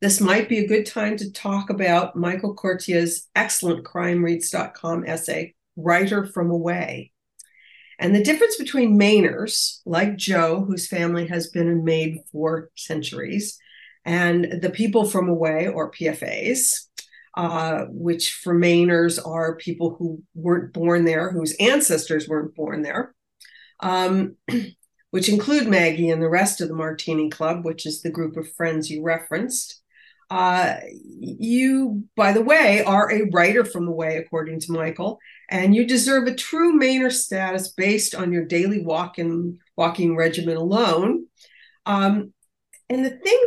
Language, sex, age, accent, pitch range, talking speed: English, female, 50-69, American, 170-225 Hz, 150 wpm